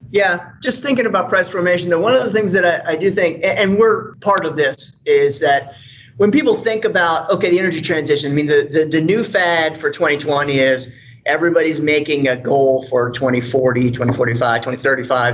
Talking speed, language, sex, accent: 190 wpm, English, male, American